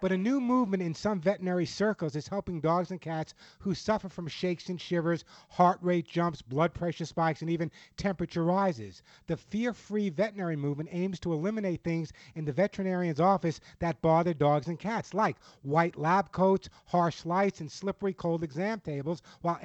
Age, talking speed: 50-69, 175 wpm